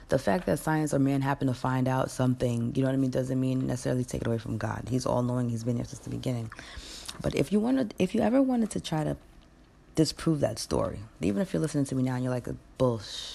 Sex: female